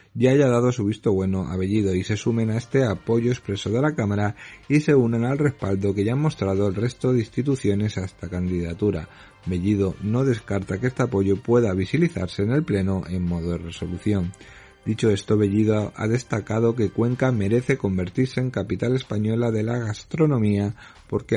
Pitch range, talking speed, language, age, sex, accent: 100-120 Hz, 185 wpm, Spanish, 40-59, male, Spanish